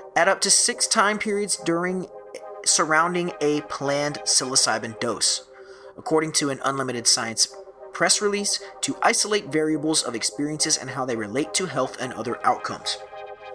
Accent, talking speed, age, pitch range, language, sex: American, 145 wpm, 30-49, 125-175 Hz, English, male